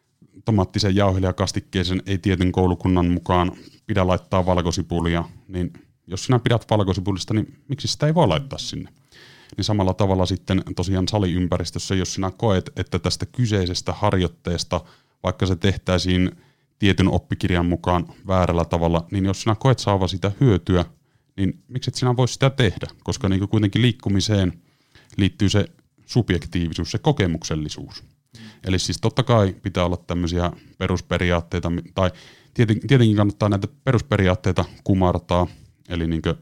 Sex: male